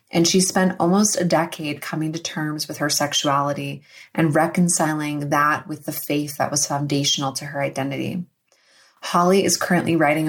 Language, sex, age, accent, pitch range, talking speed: English, female, 20-39, American, 150-175 Hz, 165 wpm